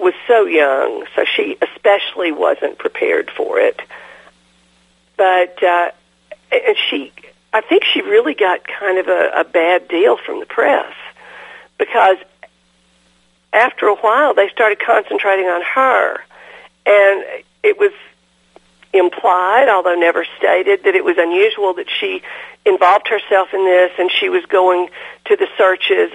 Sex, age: female, 50-69